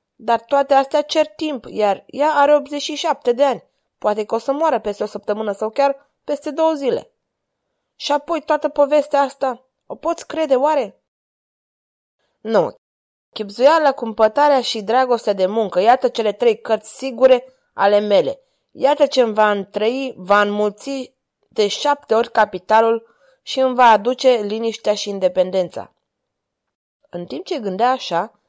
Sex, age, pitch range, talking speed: female, 20-39, 205-275 Hz, 150 wpm